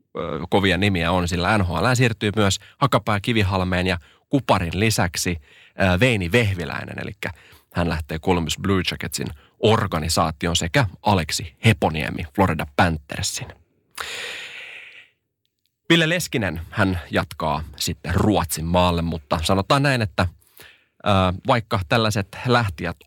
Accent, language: native, Finnish